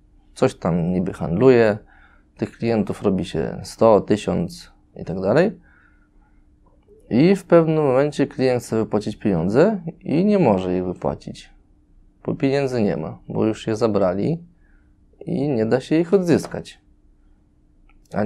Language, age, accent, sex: Polish, 20-39, native, male